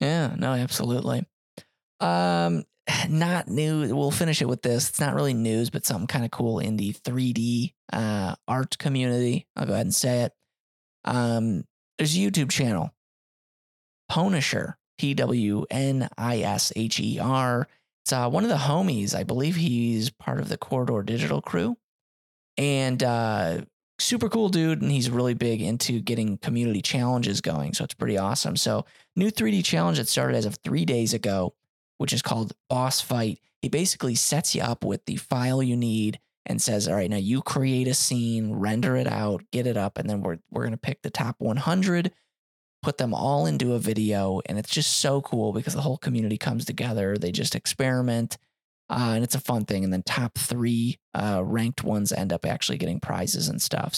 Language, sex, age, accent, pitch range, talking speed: English, male, 20-39, American, 110-135 Hz, 190 wpm